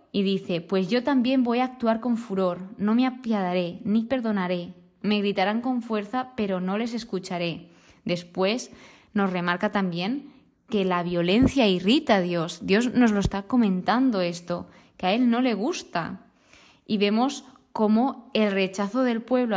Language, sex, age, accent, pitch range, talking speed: Spanish, female, 20-39, Spanish, 190-235 Hz, 160 wpm